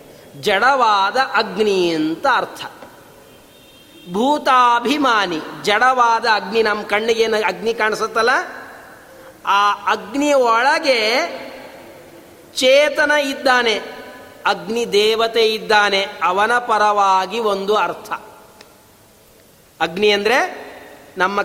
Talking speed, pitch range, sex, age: 75 wpm, 205-285 Hz, male, 40-59